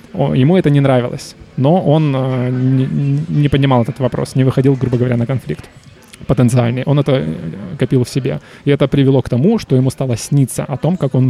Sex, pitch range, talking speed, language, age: male, 125-145 Hz, 185 wpm, Russian, 20-39